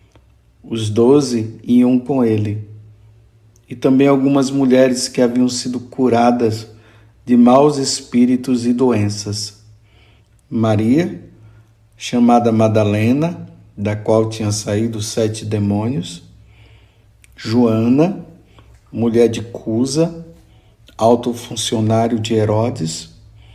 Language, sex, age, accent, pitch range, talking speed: Portuguese, male, 50-69, Brazilian, 110-120 Hz, 90 wpm